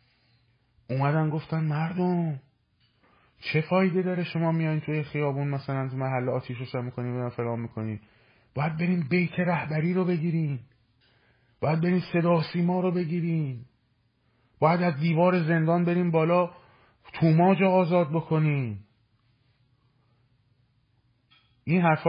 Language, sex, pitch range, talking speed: Persian, male, 115-155 Hz, 115 wpm